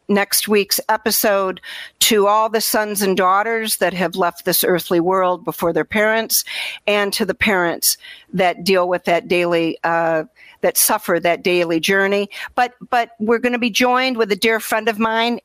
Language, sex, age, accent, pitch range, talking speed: English, female, 50-69, American, 190-230 Hz, 180 wpm